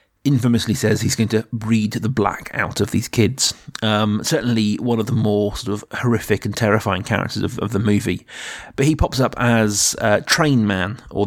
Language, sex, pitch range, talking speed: English, male, 105-120 Hz, 200 wpm